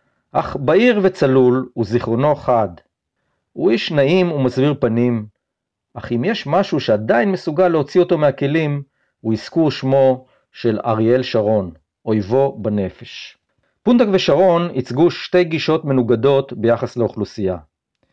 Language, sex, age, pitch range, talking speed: Hebrew, male, 50-69, 120-180 Hz, 115 wpm